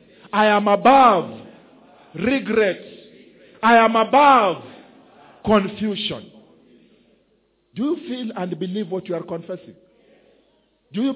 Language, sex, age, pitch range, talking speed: English, male, 50-69, 185-250 Hz, 100 wpm